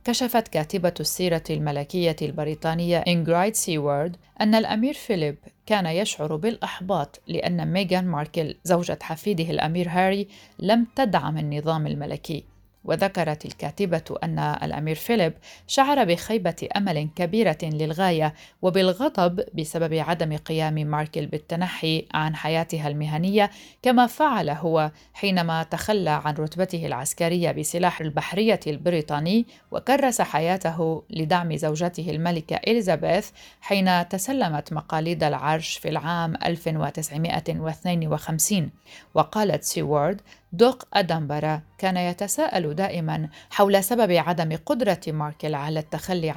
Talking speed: 105 wpm